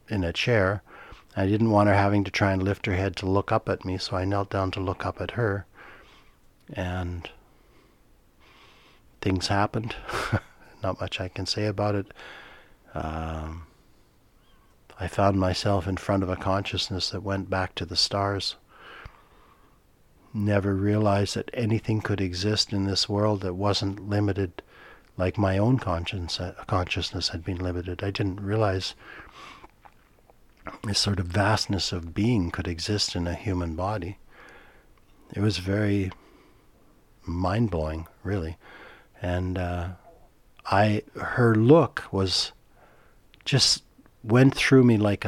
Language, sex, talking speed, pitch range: English, male, 140 wpm, 90-105 Hz